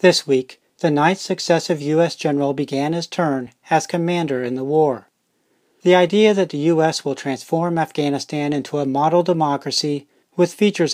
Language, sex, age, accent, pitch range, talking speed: English, male, 40-59, American, 145-175 Hz, 160 wpm